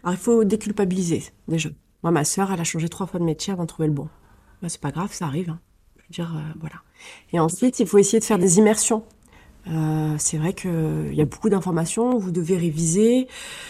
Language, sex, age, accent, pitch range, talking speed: French, female, 30-49, French, 170-215 Hz, 230 wpm